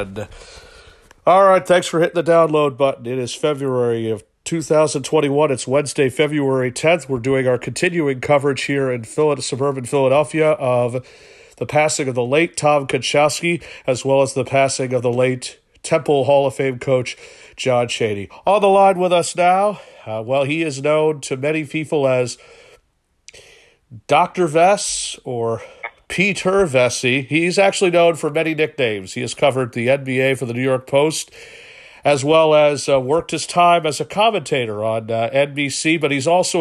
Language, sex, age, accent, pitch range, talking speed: English, male, 40-59, American, 130-170 Hz, 165 wpm